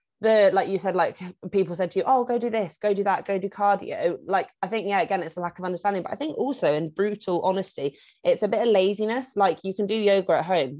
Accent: British